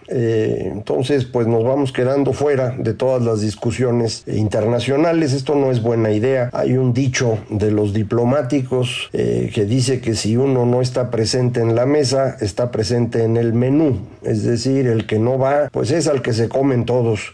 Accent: Mexican